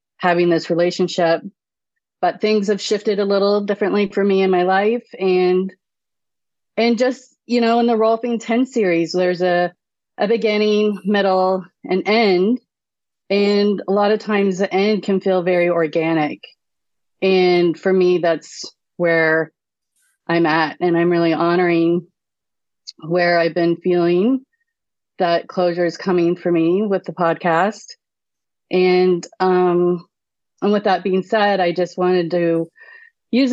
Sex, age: female, 30-49